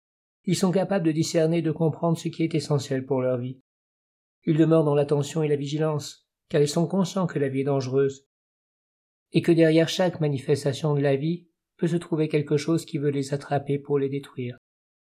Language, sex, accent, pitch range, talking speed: French, male, French, 135-160 Hz, 205 wpm